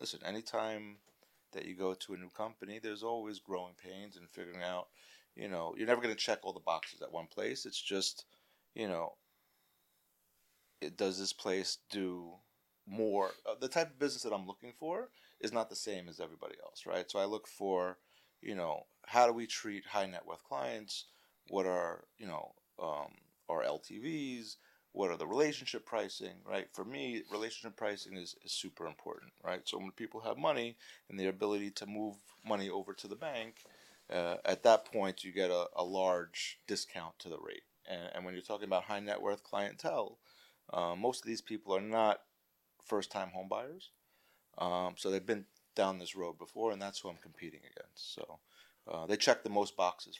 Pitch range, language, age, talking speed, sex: 90-115 Hz, English, 30-49, 190 wpm, male